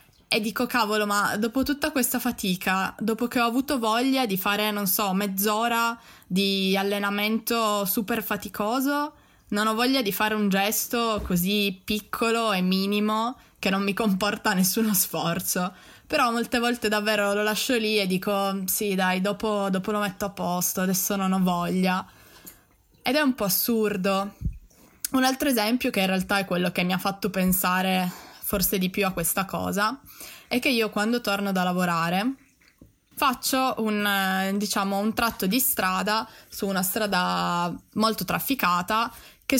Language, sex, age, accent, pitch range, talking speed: Italian, female, 20-39, native, 190-230 Hz, 160 wpm